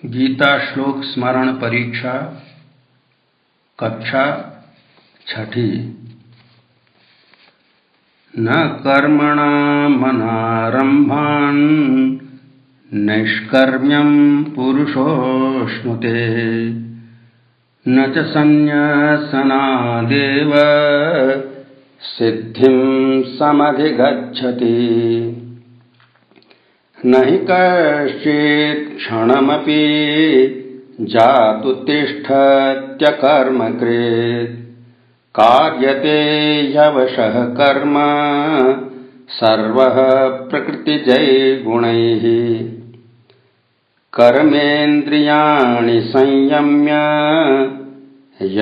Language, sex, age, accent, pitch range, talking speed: Hindi, male, 60-79, native, 120-145 Hz, 30 wpm